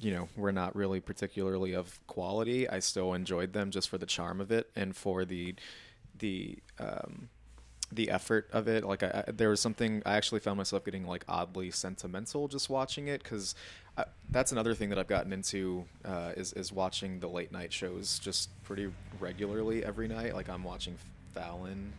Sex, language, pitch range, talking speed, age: male, English, 90-100 Hz, 190 wpm, 20-39